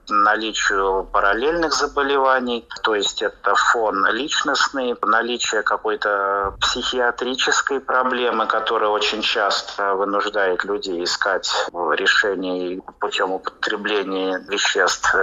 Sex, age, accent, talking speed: male, 30-49, native, 85 wpm